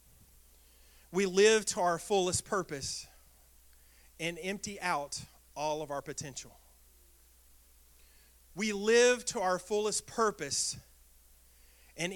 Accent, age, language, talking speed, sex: American, 40-59, English, 100 wpm, male